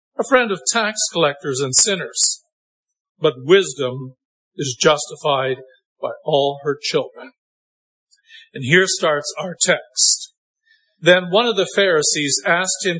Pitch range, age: 145-215 Hz, 50-69